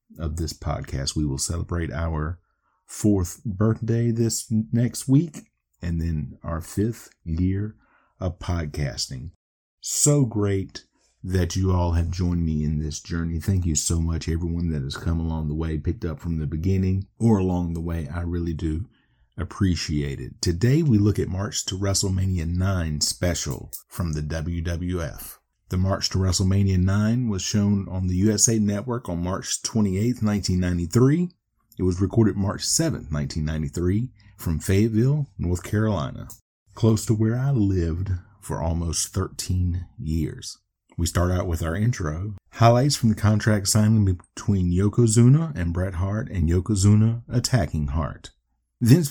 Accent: American